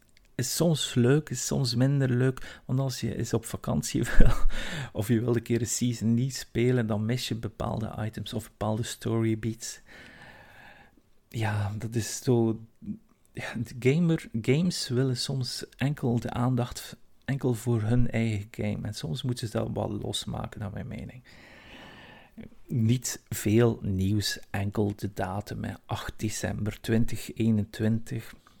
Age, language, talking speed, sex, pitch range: 50-69, Dutch, 145 wpm, male, 110-125 Hz